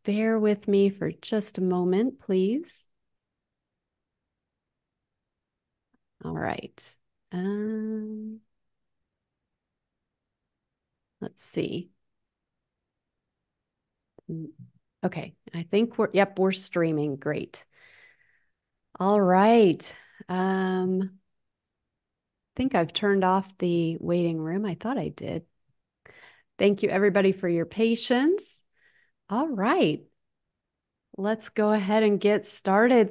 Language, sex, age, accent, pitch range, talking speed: English, female, 30-49, American, 185-215 Hz, 90 wpm